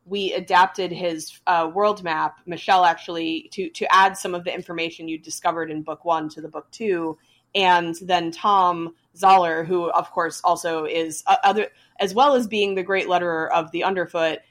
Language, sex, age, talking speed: English, female, 20-39, 185 wpm